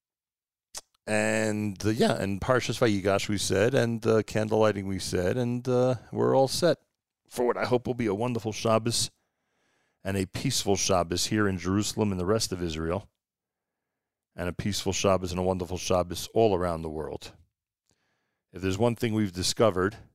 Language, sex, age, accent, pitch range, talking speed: English, male, 40-59, American, 90-110 Hz, 170 wpm